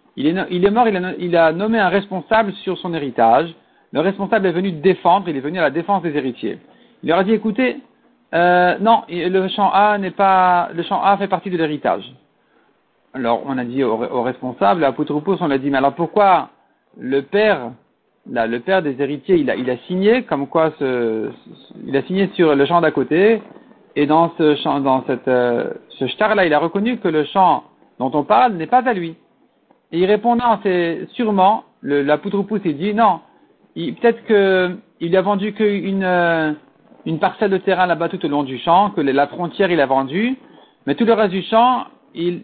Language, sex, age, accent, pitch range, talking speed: French, male, 50-69, French, 150-200 Hz, 210 wpm